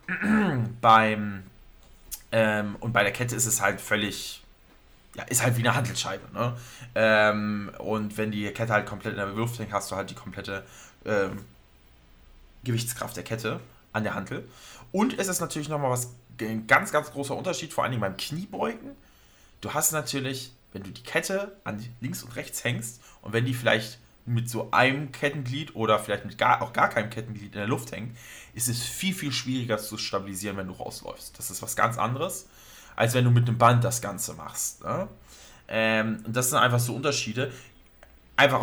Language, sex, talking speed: German, male, 190 wpm